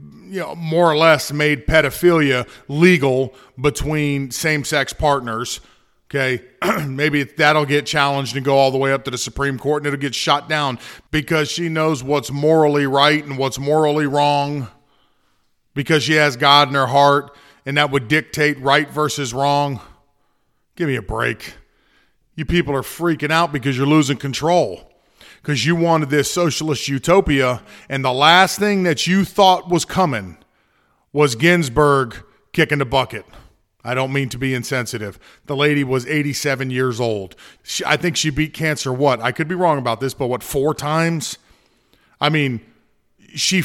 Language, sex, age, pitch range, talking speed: English, male, 40-59, 135-155 Hz, 165 wpm